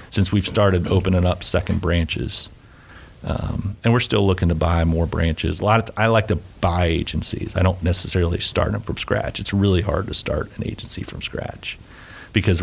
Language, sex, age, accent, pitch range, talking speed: English, male, 40-59, American, 90-100 Hz, 200 wpm